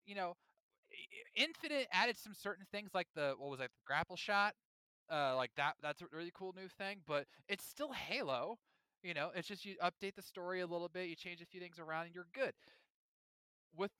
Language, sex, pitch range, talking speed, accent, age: English, male, 155-200 Hz, 210 wpm, American, 20-39